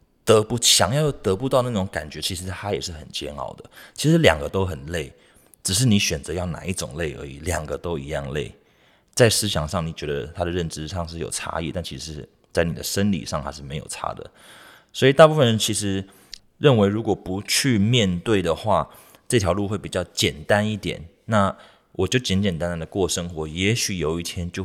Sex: male